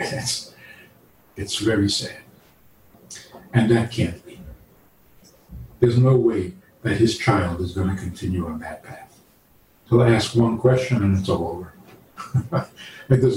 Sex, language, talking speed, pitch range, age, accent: male, English, 140 wpm, 100-150 Hz, 60-79, American